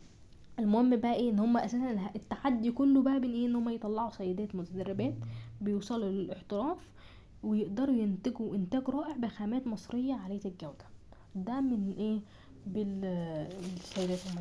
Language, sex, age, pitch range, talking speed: Arabic, female, 10-29, 180-225 Hz, 130 wpm